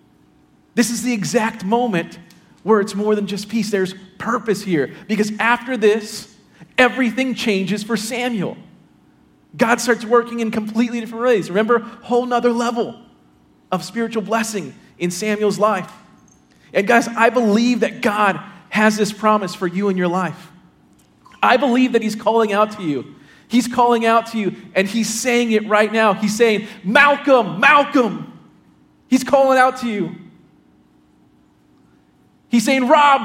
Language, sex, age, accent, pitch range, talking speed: English, male, 40-59, American, 185-240 Hz, 150 wpm